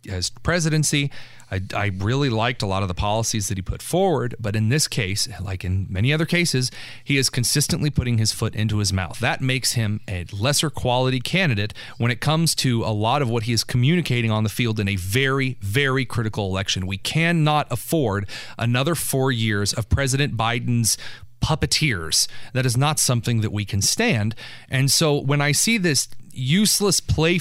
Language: English